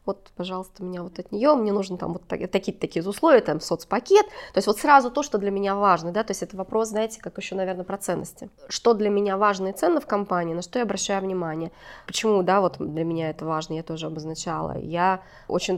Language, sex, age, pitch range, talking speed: Russian, female, 20-39, 180-210 Hz, 230 wpm